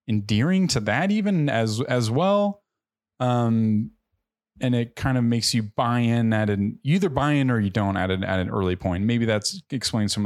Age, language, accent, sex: 20-39, English, American, male